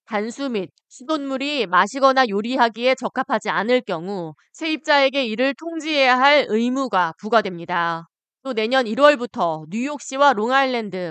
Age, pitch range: 20-39, 195-270 Hz